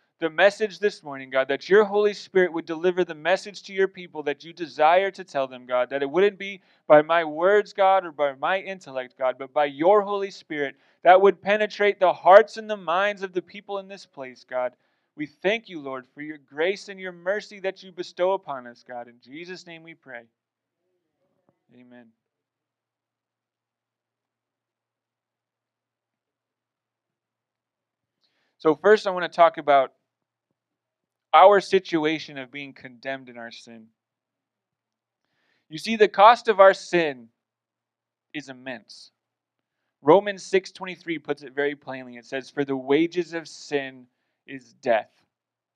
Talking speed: 155 wpm